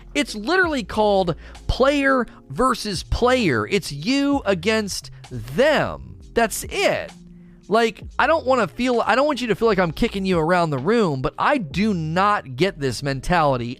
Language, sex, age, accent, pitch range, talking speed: English, male, 30-49, American, 150-230 Hz, 165 wpm